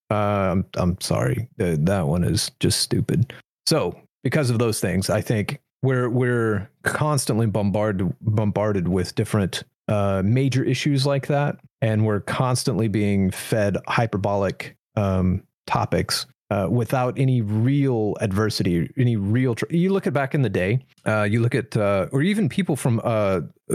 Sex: male